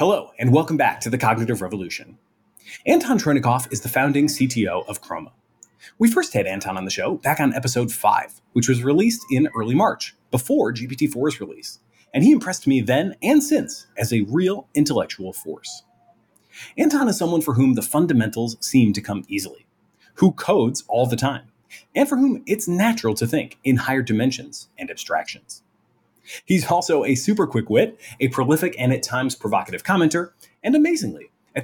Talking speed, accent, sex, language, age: 175 wpm, American, male, English, 30-49